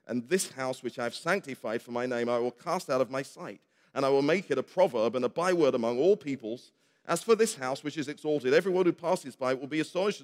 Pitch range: 115-155 Hz